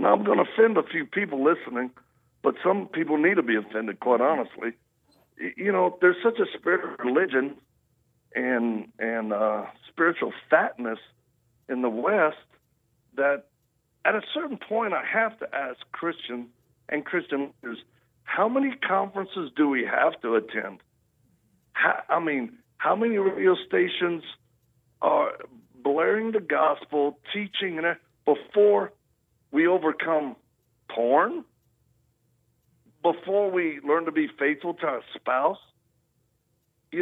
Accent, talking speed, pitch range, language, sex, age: American, 135 wpm, 125-200 Hz, English, male, 60-79